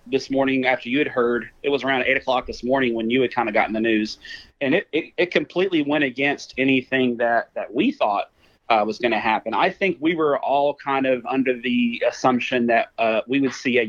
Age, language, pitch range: 30-49, English, 120-150 Hz